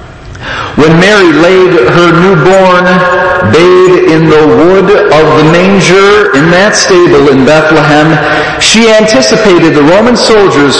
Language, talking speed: English, 120 wpm